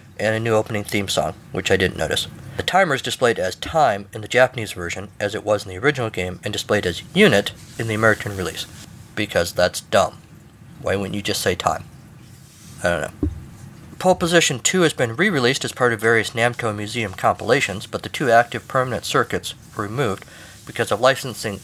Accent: American